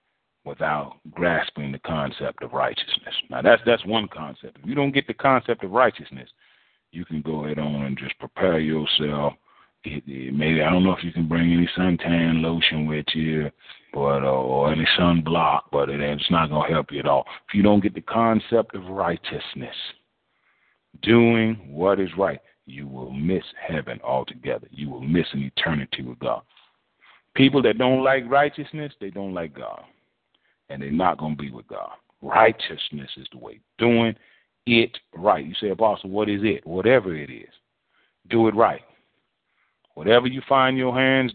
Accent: American